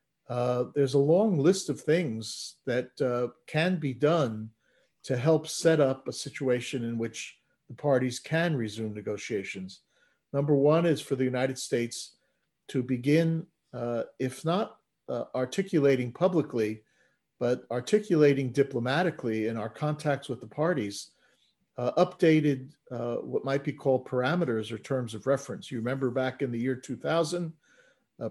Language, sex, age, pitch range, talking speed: English, male, 50-69, 125-155 Hz, 145 wpm